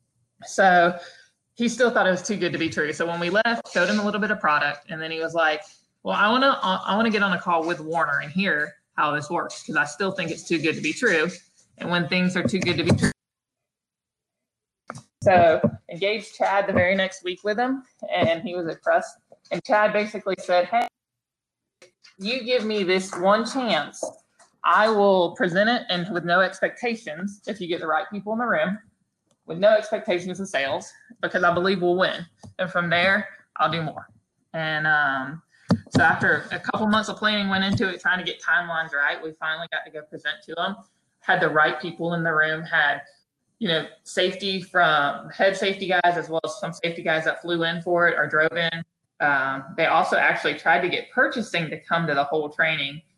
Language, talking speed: English, 210 wpm